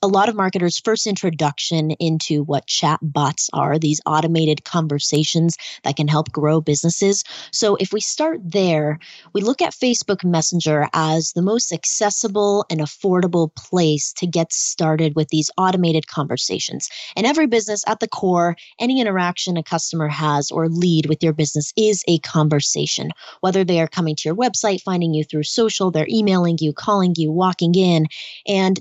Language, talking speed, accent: English, 170 wpm, American